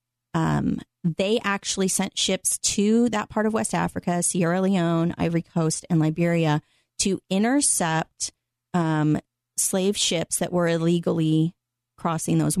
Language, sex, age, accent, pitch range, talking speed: English, female, 30-49, American, 160-195 Hz, 130 wpm